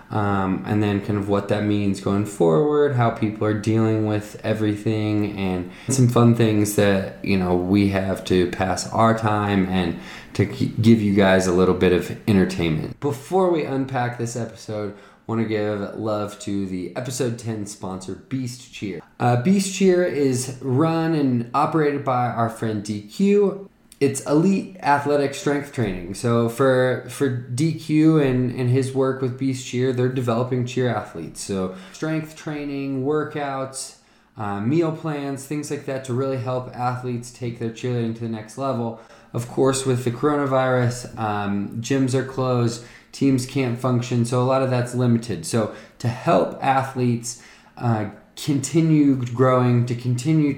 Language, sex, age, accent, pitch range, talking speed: English, male, 20-39, American, 105-135 Hz, 160 wpm